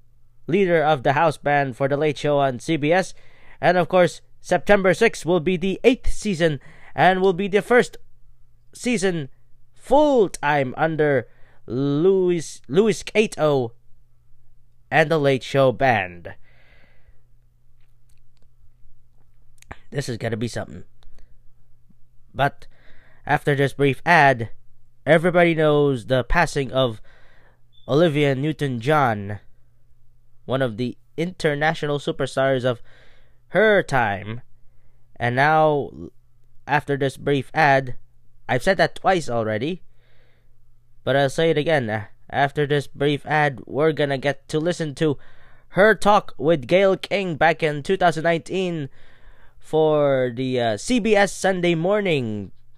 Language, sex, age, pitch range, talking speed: English, male, 20-39, 120-160 Hz, 115 wpm